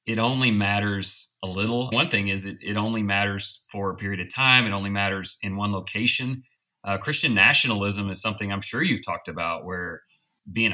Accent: American